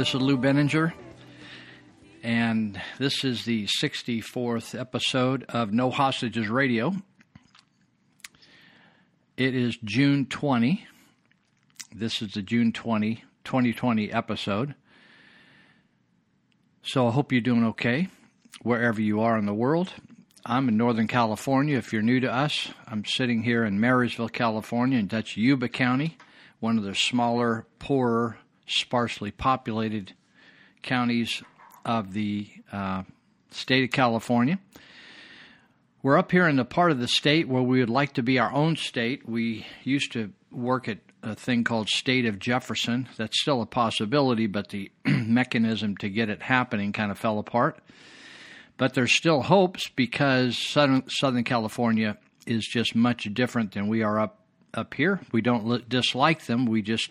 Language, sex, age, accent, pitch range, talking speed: English, male, 50-69, American, 110-130 Hz, 145 wpm